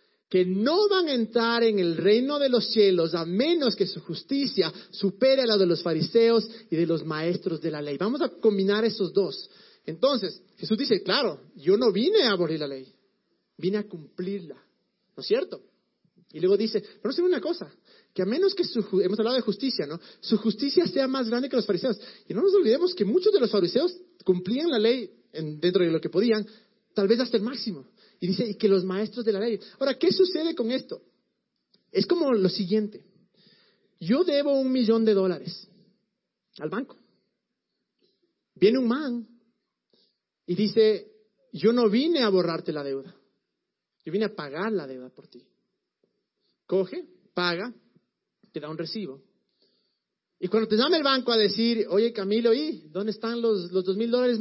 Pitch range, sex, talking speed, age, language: 185-245 Hz, male, 185 wpm, 40-59, Spanish